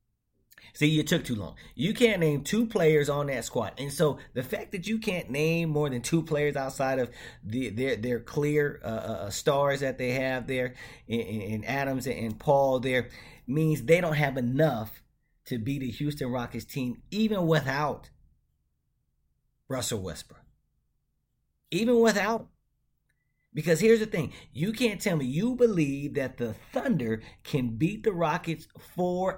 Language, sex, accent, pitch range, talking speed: English, male, American, 120-165 Hz, 160 wpm